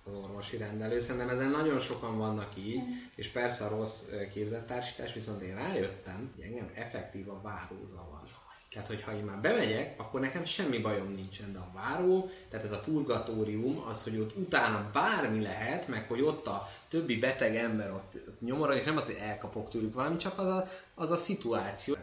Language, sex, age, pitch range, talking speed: Hungarian, male, 20-39, 105-135 Hz, 180 wpm